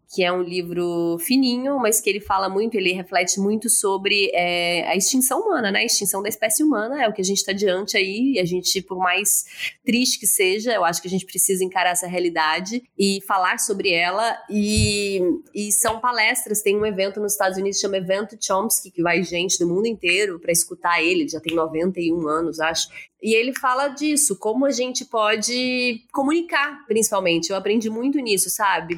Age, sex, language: 20-39, female, Portuguese